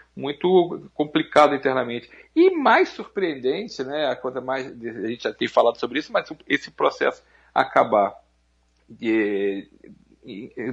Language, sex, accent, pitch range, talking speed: Portuguese, male, Brazilian, 125-180 Hz, 130 wpm